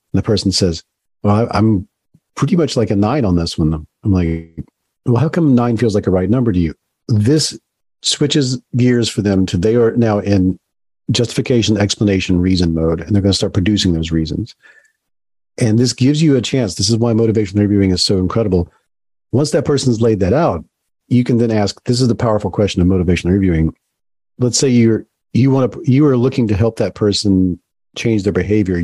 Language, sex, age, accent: English, male, 40-59, American